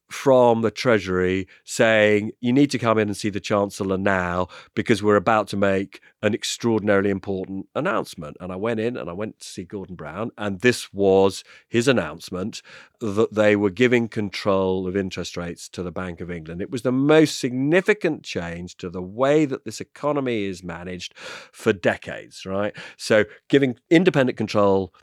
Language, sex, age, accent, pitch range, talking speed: English, male, 40-59, British, 95-130 Hz, 175 wpm